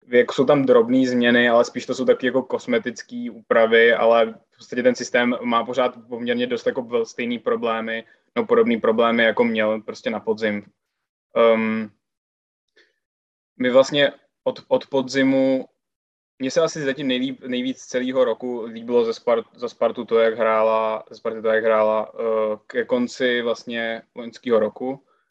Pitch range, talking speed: 115-130 Hz, 140 wpm